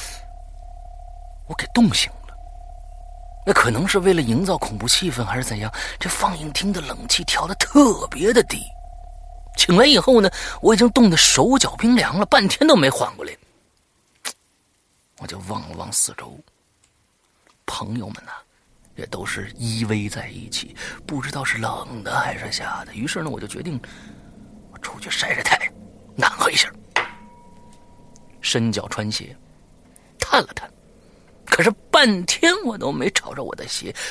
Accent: native